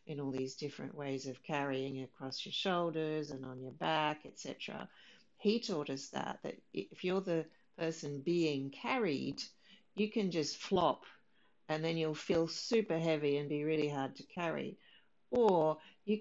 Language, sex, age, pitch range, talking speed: English, female, 60-79, 150-200 Hz, 165 wpm